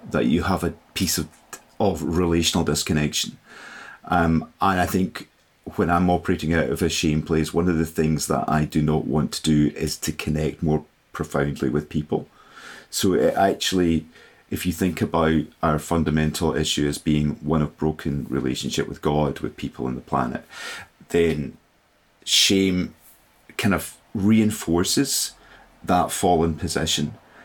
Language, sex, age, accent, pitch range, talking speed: English, male, 40-59, British, 75-90 Hz, 155 wpm